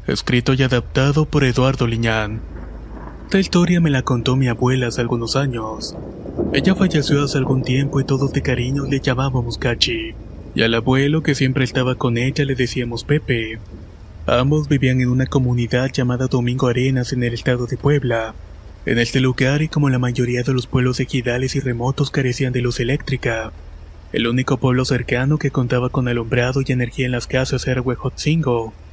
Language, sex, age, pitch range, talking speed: Spanish, male, 20-39, 120-140 Hz, 175 wpm